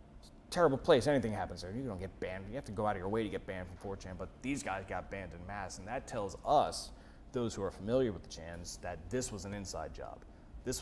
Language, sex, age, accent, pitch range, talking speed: English, male, 30-49, American, 95-120 Hz, 260 wpm